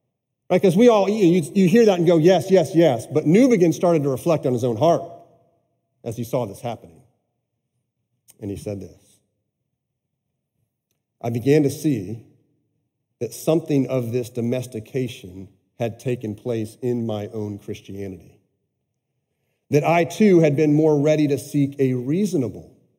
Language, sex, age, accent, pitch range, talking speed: English, male, 40-59, American, 115-155 Hz, 155 wpm